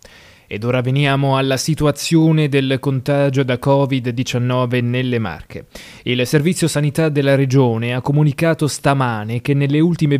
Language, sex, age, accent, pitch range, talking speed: Italian, male, 20-39, native, 125-150 Hz, 130 wpm